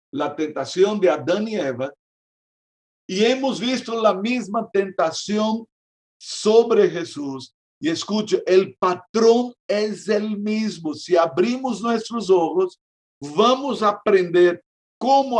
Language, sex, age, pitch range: Spanish, male, 60-79, 180-230 Hz